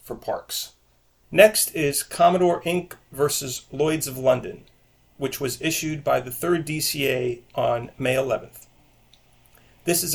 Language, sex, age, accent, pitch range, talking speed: English, male, 40-59, American, 125-155 Hz, 130 wpm